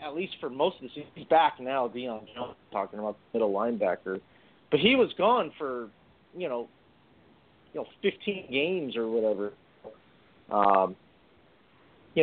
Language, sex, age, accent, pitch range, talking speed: English, male, 40-59, American, 115-150 Hz, 155 wpm